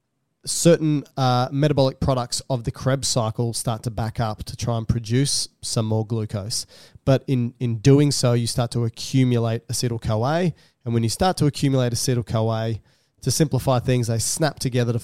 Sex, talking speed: male, 170 wpm